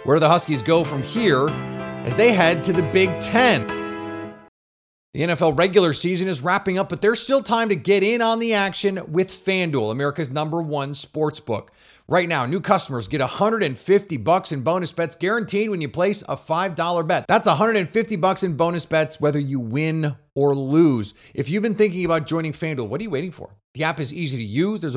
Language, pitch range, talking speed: English, 135-185 Hz, 200 wpm